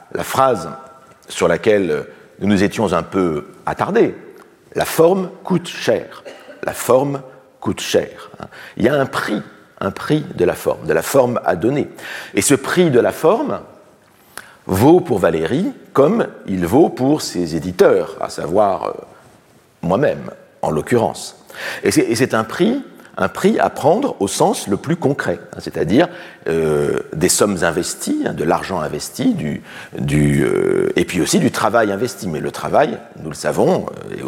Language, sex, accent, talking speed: French, male, French, 165 wpm